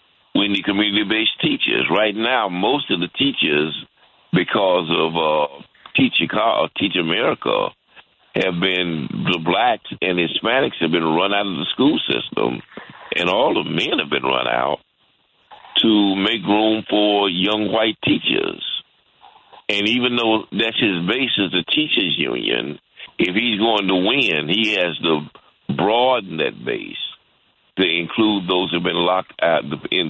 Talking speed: 145 wpm